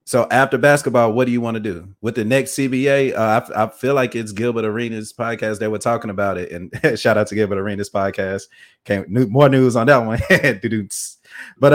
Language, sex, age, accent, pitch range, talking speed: English, male, 30-49, American, 105-125 Hz, 220 wpm